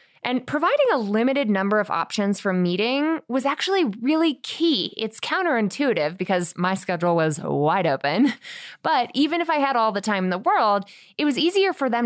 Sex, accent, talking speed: female, American, 185 wpm